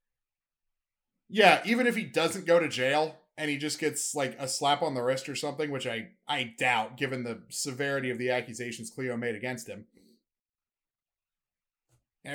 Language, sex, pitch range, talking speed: English, male, 125-165 Hz, 170 wpm